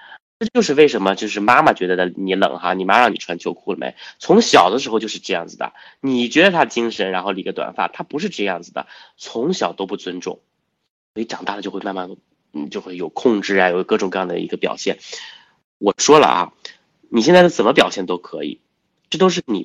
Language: Chinese